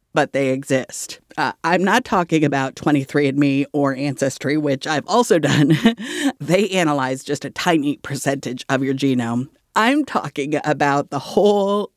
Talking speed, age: 145 wpm, 50-69